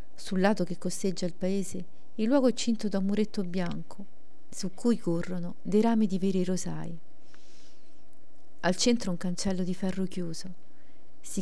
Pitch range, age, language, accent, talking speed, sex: 175-210 Hz, 40-59, Italian, native, 160 wpm, female